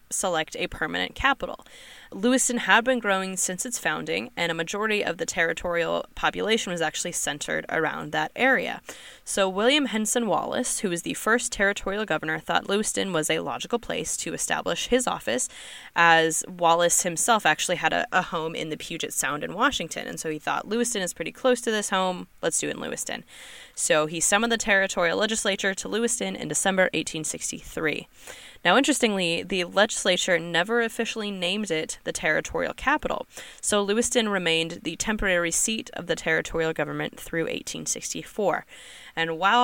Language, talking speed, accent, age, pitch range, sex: English, 165 wpm, American, 20-39, 165-225 Hz, female